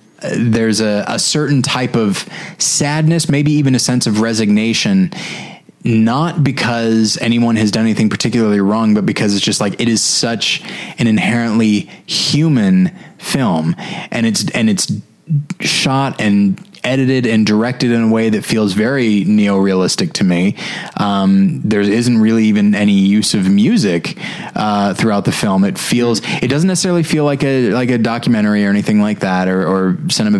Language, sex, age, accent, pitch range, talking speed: English, male, 20-39, American, 105-135 Hz, 160 wpm